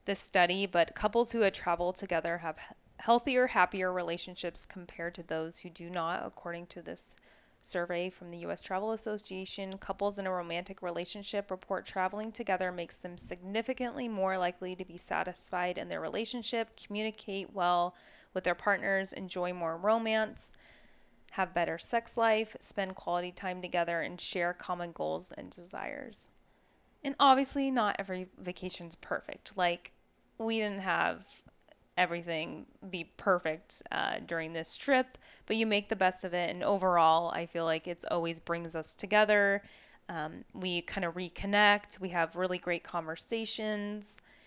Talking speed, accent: 150 wpm, American